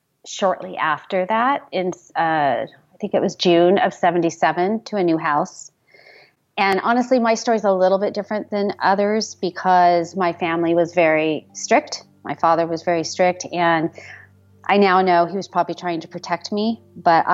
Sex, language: female, English